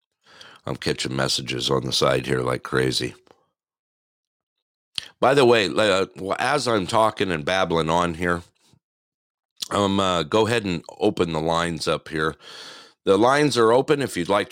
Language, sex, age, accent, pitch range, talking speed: English, male, 50-69, American, 70-90 Hz, 150 wpm